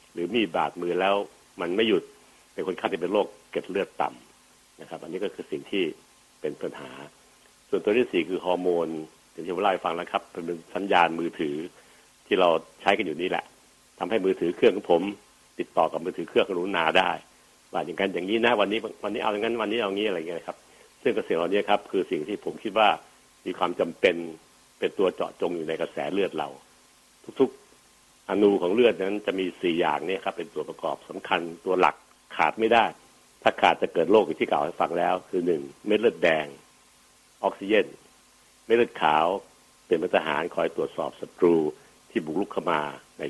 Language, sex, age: Thai, male, 60-79